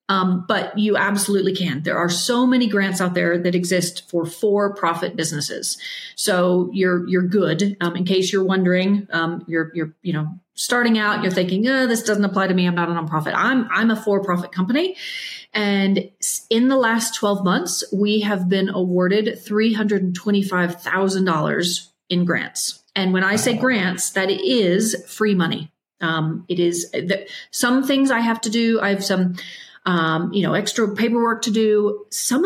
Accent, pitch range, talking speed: American, 175-220 Hz, 175 wpm